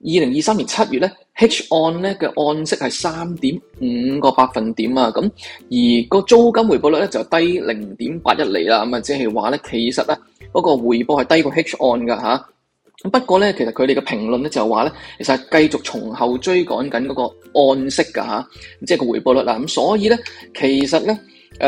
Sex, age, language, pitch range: male, 20-39, Chinese, 125-185 Hz